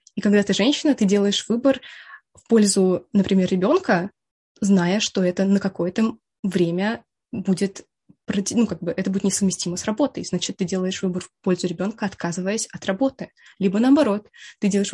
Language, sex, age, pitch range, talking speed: Russian, female, 20-39, 185-220 Hz, 150 wpm